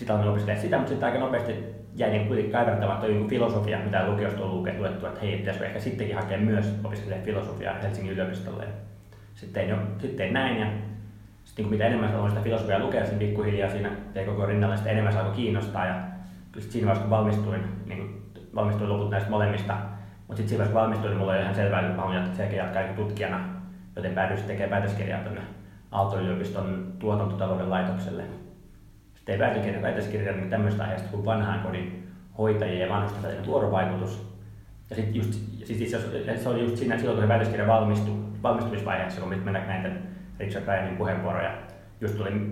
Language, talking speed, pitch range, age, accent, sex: Finnish, 165 wpm, 95-105 Hz, 20-39, native, male